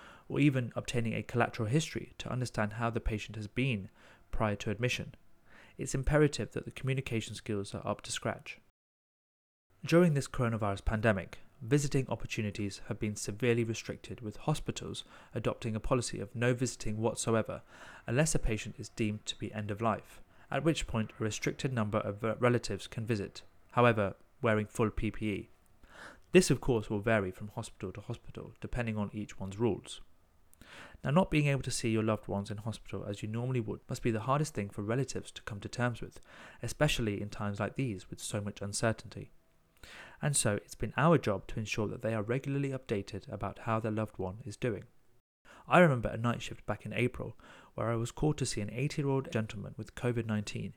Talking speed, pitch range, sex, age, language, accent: 190 wpm, 105-125 Hz, male, 30-49, English, British